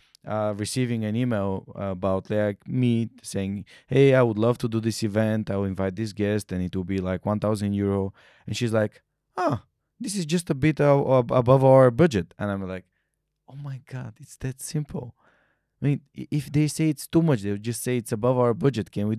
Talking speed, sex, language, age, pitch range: 215 wpm, male, Bulgarian, 20-39, 105-140 Hz